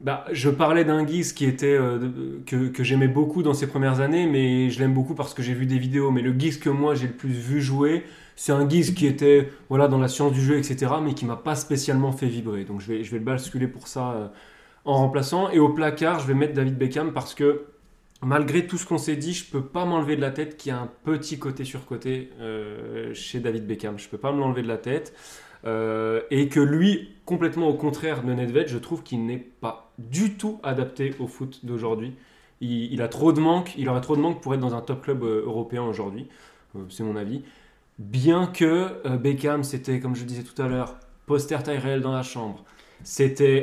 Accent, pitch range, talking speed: French, 125-150 Hz, 225 wpm